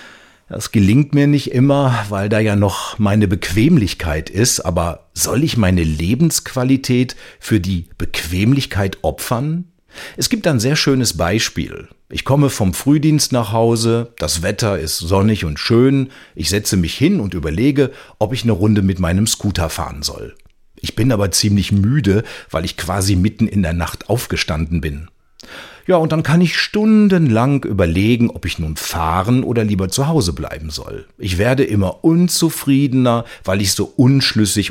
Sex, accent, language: male, German, German